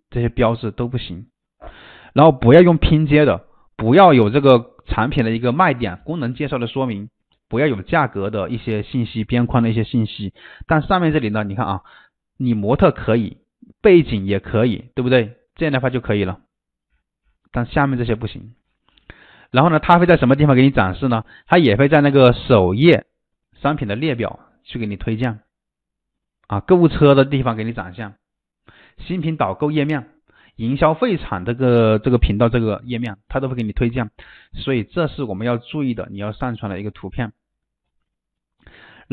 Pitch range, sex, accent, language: 110-145 Hz, male, native, Chinese